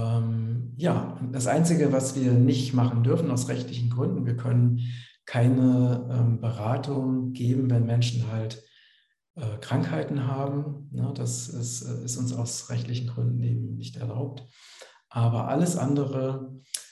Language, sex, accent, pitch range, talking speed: German, male, German, 120-135 Hz, 115 wpm